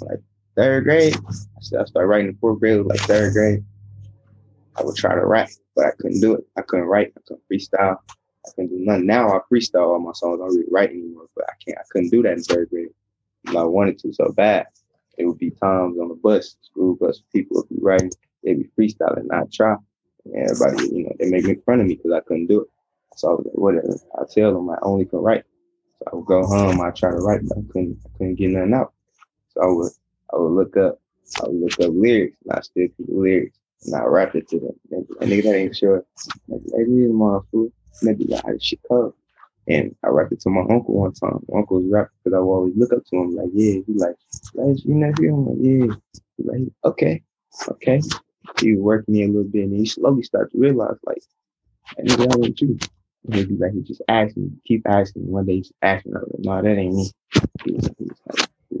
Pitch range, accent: 95-110 Hz, American